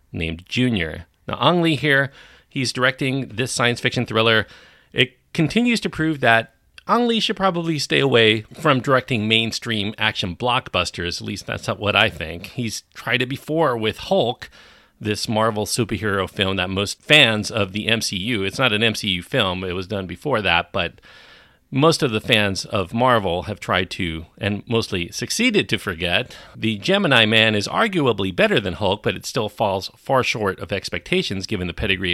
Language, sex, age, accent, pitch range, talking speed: English, male, 40-59, American, 100-130 Hz, 175 wpm